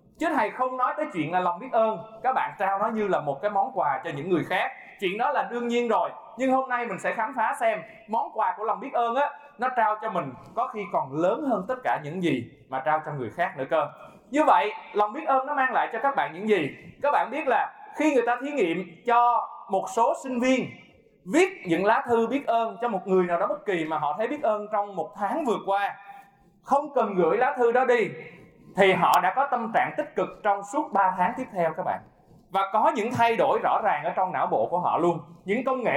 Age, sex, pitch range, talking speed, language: 20-39, male, 185-260 Hz, 260 wpm, Vietnamese